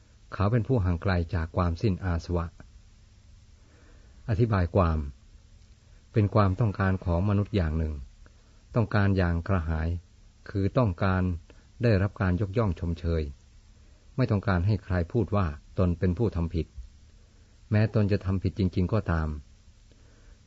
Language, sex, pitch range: Thai, male, 85-100 Hz